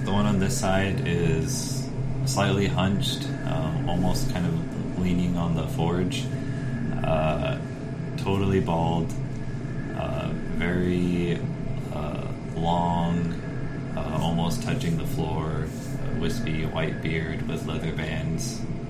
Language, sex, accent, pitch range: English, male, American, 95-140 Hz